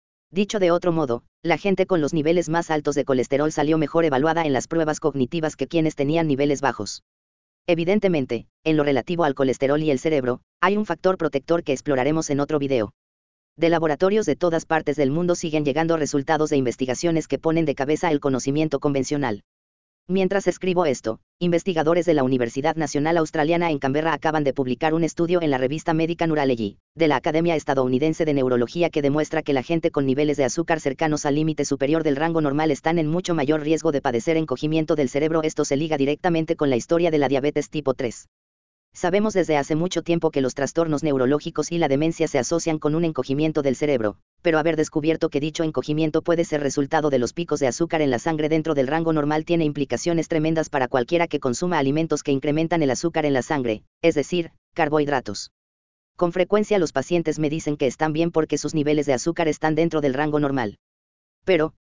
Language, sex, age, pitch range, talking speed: Spanish, female, 40-59, 135-165 Hz, 200 wpm